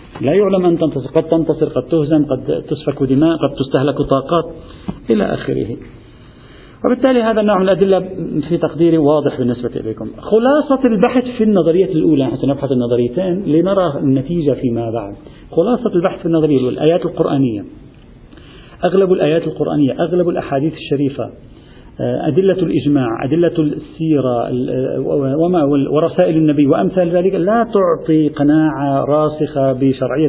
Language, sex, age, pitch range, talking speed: Arabic, male, 50-69, 135-175 Hz, 125 wpm